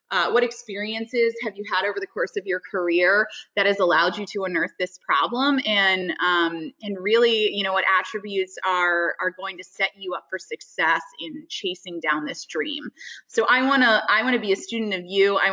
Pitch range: 185-245 Hz